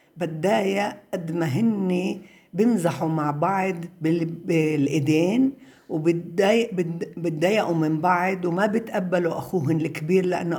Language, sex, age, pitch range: Arabic, female, 60-79, 160-220 Hz